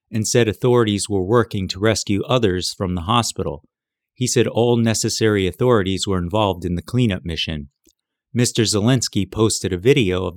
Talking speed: 160 wpm